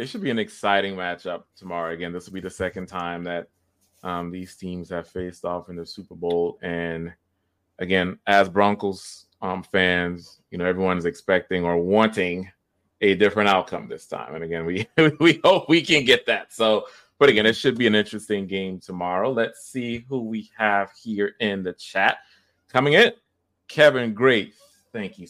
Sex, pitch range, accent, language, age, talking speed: male, 90-110 Hz, American, English, 30-49, 180 wpm